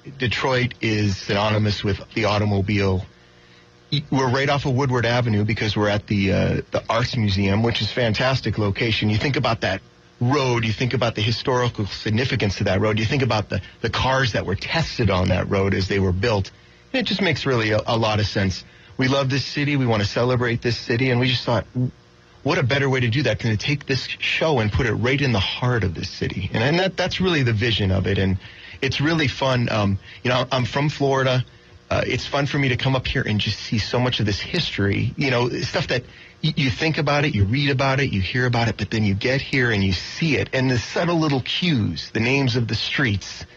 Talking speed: 235 wpm